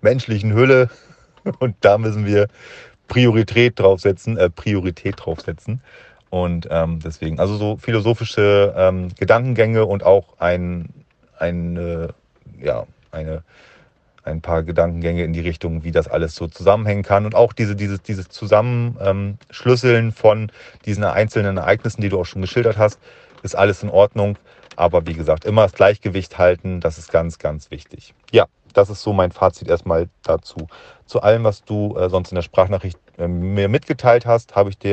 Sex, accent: male, German